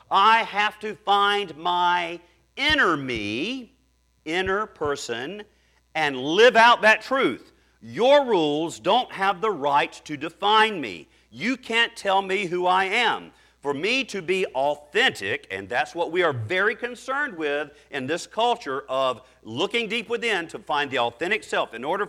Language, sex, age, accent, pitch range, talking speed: English, male, 50-69, American, 155-235 Hz, 155 wpm